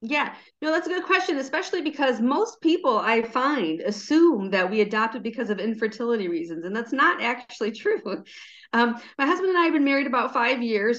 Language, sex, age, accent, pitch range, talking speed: English, female, 40-59, American, 210-275 Hz, 195 wpm